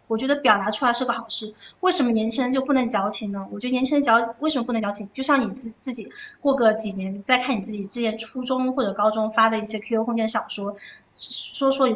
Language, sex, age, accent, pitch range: Chinese, female, 20-39, native, 215-265 Hz